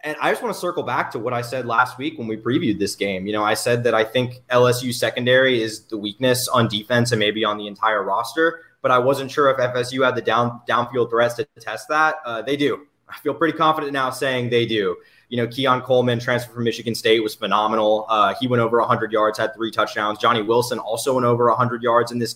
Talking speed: 240 wpm